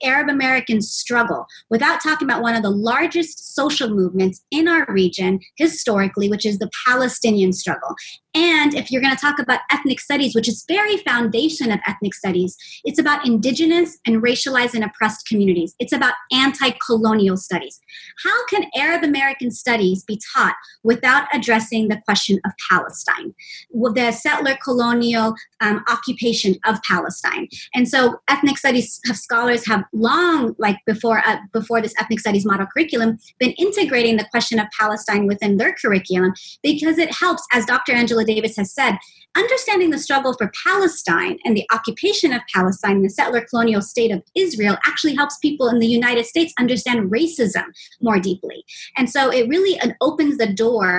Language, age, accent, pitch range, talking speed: English, 30-49, American, 210-275 Hz, 160 wpm